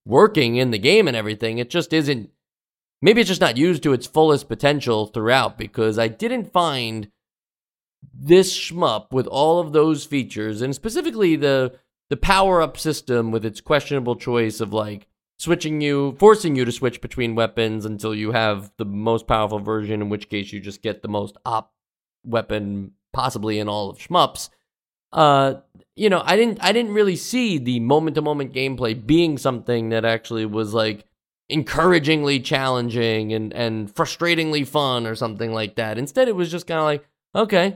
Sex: male